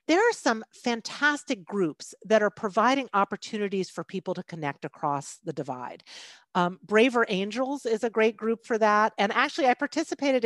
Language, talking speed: English, 165 wpm